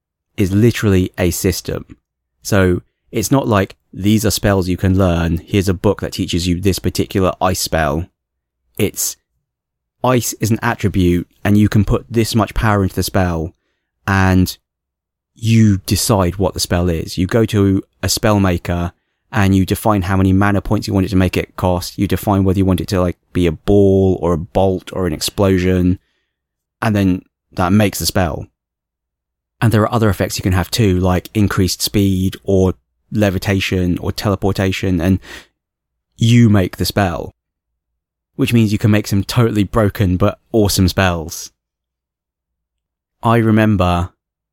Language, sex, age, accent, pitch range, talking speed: English, male, 20-39, British, 90-105 Hz, 165 wpm